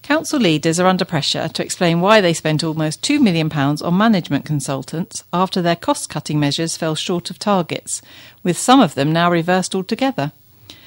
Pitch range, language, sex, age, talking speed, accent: 150-205 Hz, English, female, 50-69, 170 wpm, British